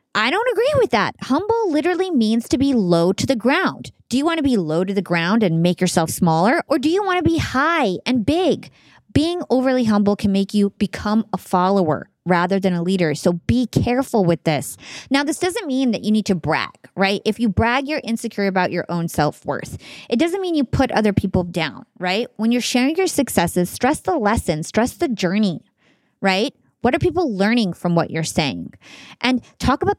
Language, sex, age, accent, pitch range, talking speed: English, female, 20-39, American, 180-250 Hz, 210 wpm